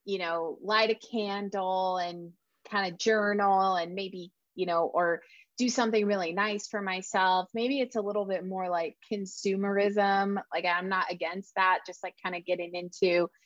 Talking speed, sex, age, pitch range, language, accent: 175 wpm, female, 20-39, 180-225 Hz, English, American